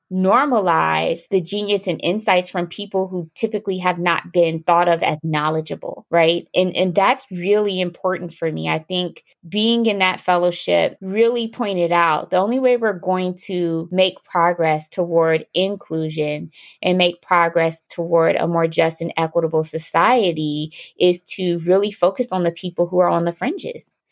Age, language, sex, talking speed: 20-39, English, female, 160 wpm